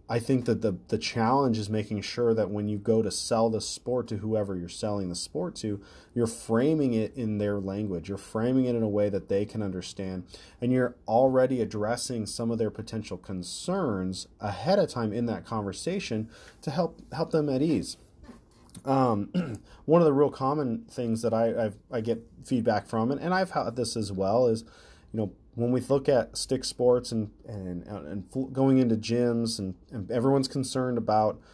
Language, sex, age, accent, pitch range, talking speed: English, male, 30-49, American, 100-120 Hz, 195 wpm